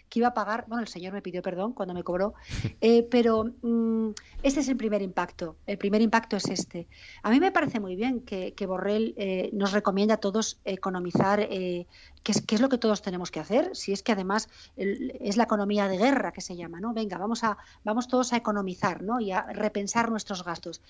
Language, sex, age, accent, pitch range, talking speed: Spanish, female, 40-59, Spanish, 200-240 Hz, 225 wpm